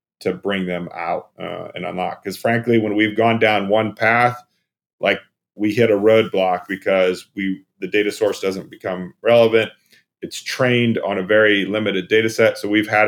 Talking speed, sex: 180 wpm, male